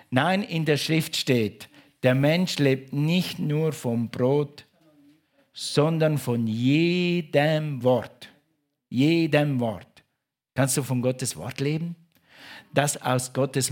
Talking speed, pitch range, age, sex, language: 120 wpm, 130-160 Hz, 50-69, male, German